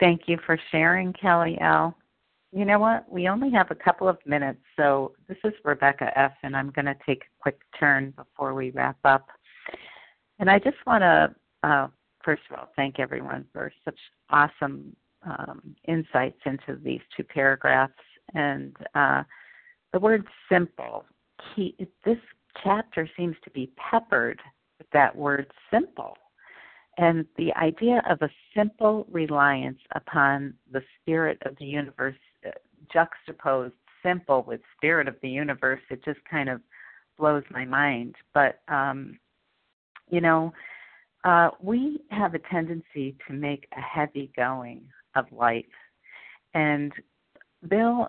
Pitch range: 135-180 Hz